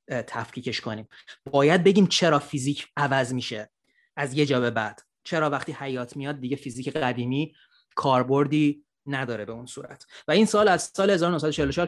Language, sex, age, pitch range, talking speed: Persian, male, 30-49, 130-160 Hz, 155 wpm